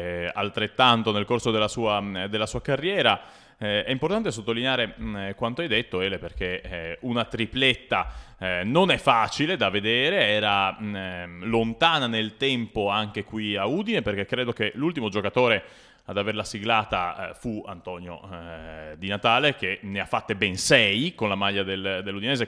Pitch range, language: 100-125 Hz, Italian